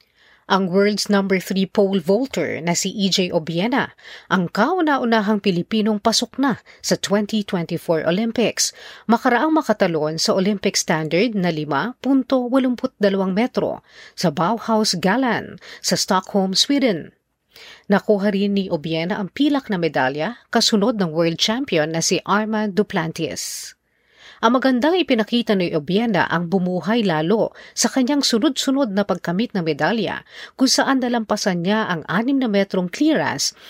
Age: 40-59